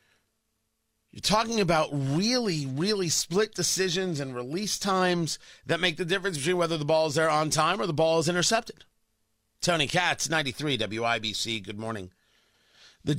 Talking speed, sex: 155 wpm, male